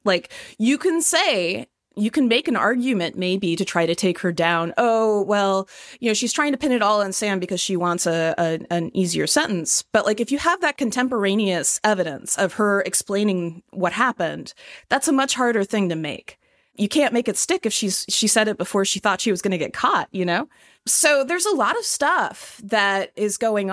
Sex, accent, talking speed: female, American, 220 wpm